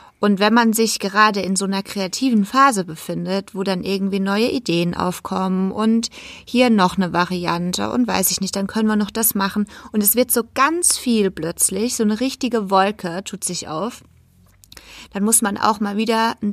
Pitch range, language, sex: 190-235 Hz, German, female